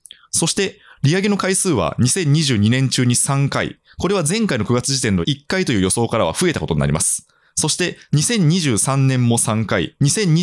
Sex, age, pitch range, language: male, 20-39, 110-175 Hz, Japanese